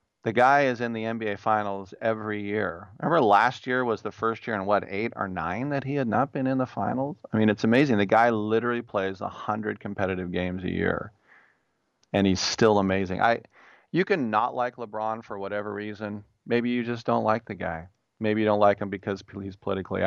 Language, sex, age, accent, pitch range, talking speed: English, male, 40-59, American, 100-115 Hz, 210 wpm